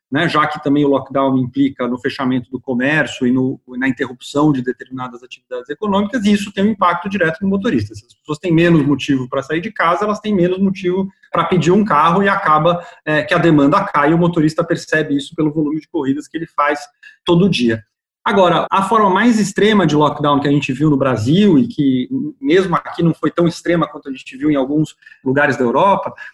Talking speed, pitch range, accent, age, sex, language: 215 wpm, 145-200 Hz, Brazilian, 30-49, male, Portuguese